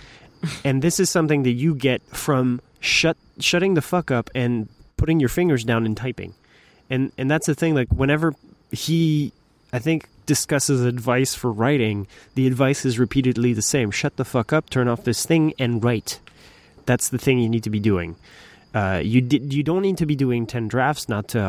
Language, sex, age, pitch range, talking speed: English, male, 20-39, 120-150 Hz, 200 wpm